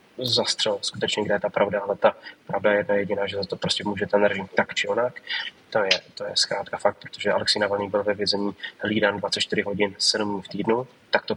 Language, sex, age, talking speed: Slovak, male, 20-39, 220 wpm